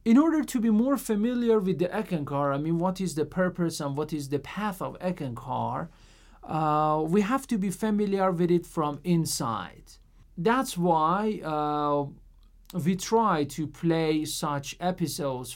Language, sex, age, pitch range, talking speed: Persian, male, 40-59, 145-185 Hz, 160 wpm